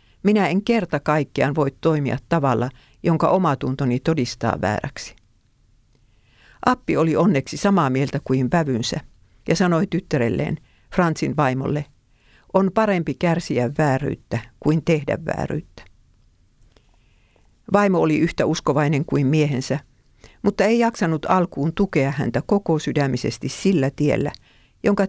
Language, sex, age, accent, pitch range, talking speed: Finnish, female, 50-69, native, 130-175 Hz, 115 wpm